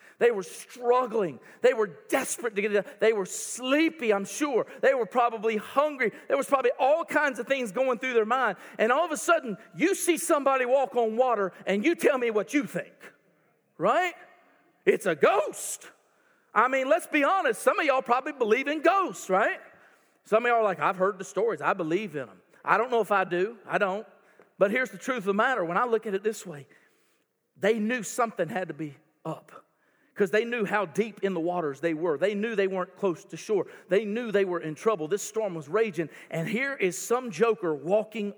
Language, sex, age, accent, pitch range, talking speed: English, male, 50-69, American, 190-280 Hz, 215 wpm